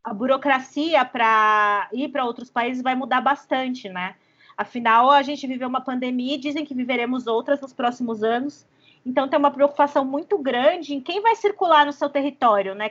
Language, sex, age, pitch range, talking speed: Portuguese, female, 20-39, 245-300 Hz, 180 wpm